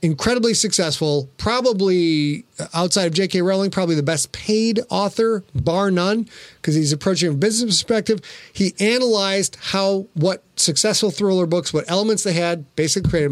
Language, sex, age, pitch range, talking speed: English, male, 30-49, 155-195 Hz, 150 wpm